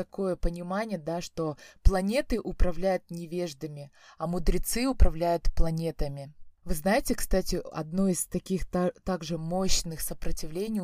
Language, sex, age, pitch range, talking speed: Russian, female, 20-39, 170-210 Hz, 110 wpm